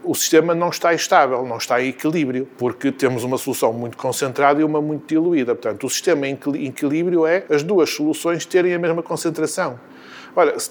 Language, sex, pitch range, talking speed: Portuguese, male, 135-180 Hz, 190 wpm